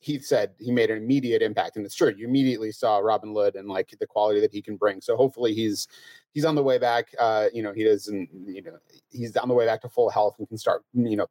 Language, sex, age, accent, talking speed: English, male, 30-49, American, 270 wpm